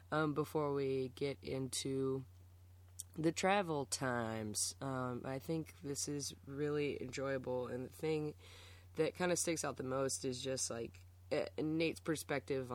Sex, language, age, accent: female, English, 20-39, American